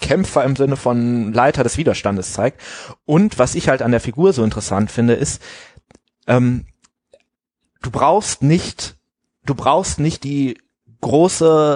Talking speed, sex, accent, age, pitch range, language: 145 wpm, male, German, 30-49, 110-140 Hz, German